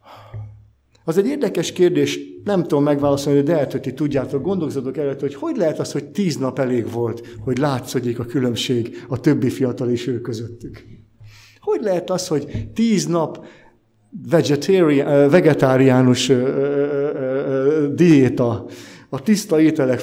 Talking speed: 125 wpm